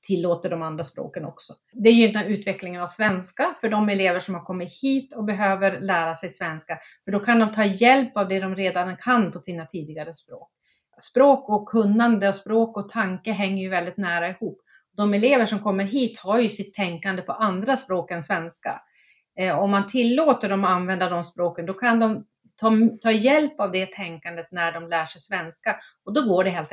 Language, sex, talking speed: Swedish, female, 205 wpm